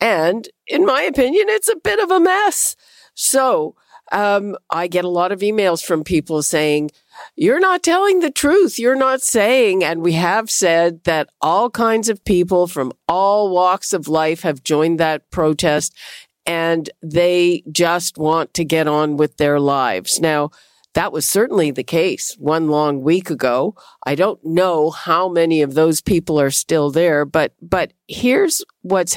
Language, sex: English, female